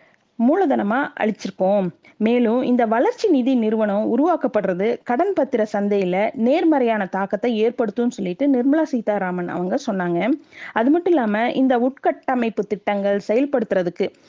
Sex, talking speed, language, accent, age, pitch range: female, 110 wpm, Tamil, native, 30-49, 205-275 Hz